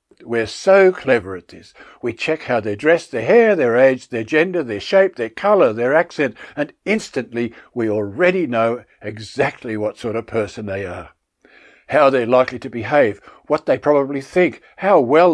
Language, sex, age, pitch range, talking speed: English, male, 60-79, 110-160 Hz, 175 wpm